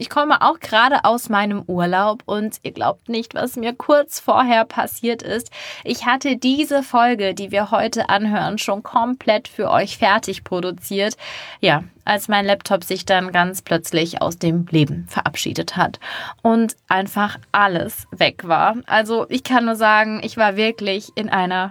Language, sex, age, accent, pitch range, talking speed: German, female, 20-39, German, 190-235 Hz, 165 wpm